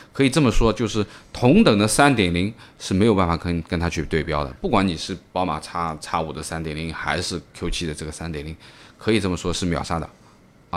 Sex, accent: male, native